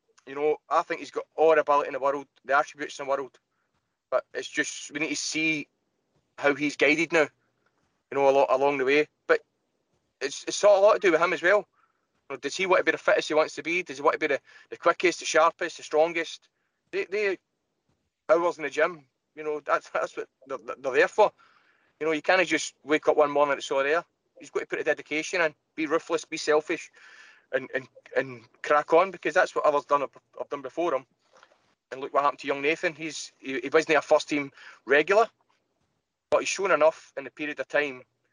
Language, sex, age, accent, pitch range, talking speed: English, male, 20-39, British, 140-175 Hz, 235 wpm